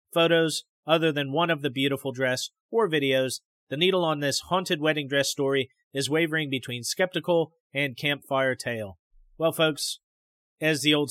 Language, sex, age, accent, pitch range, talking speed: English, male, 30-49, American, 135-160 Hz, 160 wpm